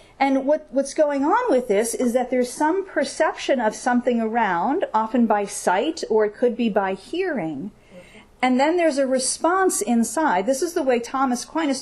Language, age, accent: English, 50-69, American